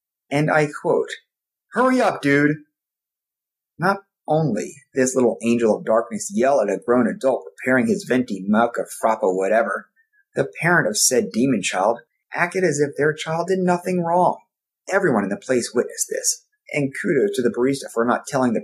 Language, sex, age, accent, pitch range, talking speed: English, male, 30-49, American, 125-195 Hz, 175 wpm